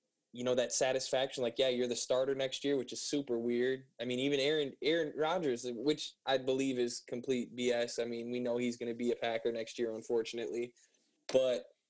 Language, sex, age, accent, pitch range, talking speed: English, male, 20-39, American, 130-150 Hz, 205 wpm